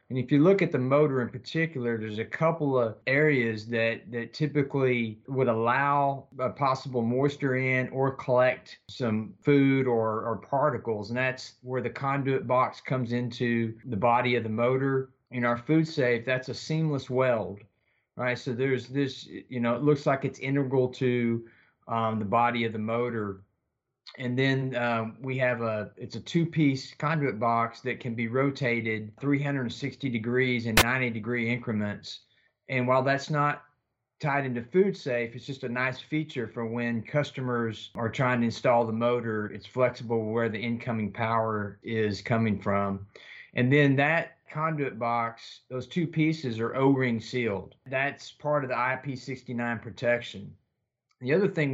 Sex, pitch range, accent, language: male, 115-135 Hz, American, English